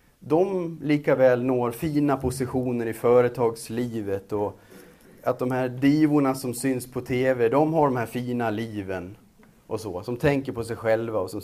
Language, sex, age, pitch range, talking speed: Swedish, male, 30-49, 105-145 Hz, 165 wpm